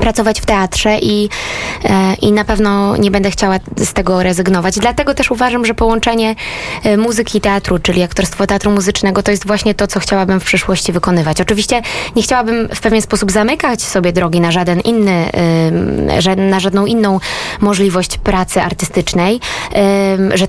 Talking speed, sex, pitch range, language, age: 155 wpm, female, 175-215 Hz, Polish, 20-39